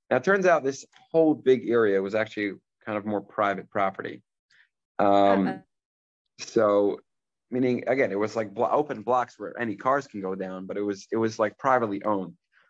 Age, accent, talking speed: 20-39, American, 175 wpm